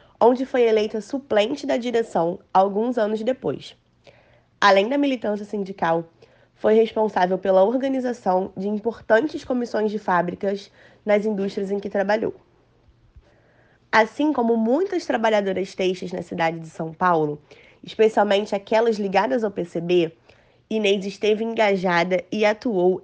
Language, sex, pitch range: Portuguese, female, 185-230 Hz